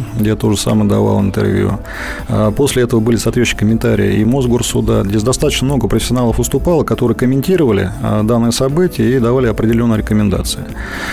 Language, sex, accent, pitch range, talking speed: Russian, male, native, 110-130 Hz, 140 wpm